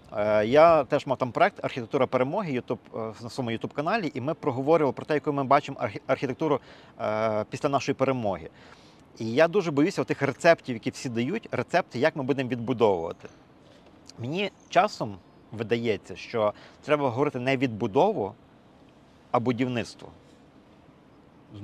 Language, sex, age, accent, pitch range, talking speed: Ukrainian, male, 40-59, native, 115-145 Hz, 135 wpm